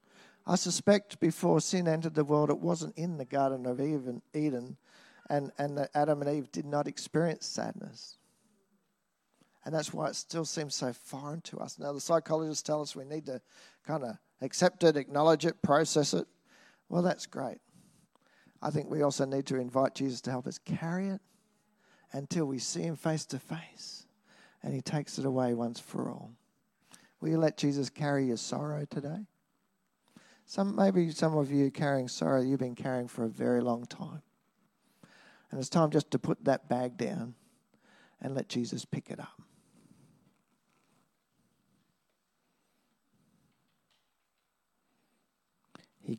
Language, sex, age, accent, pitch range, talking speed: English, male, 50-69, Australian, 135-170 Hz, 155 wpm